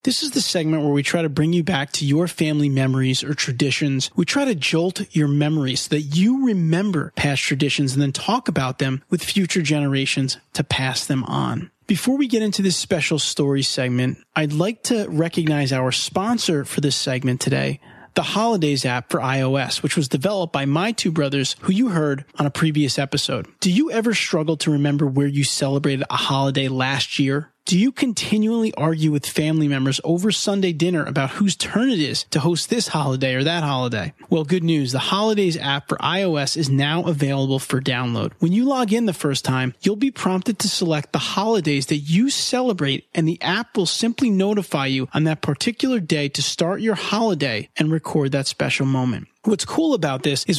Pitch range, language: 140-190 Hz, English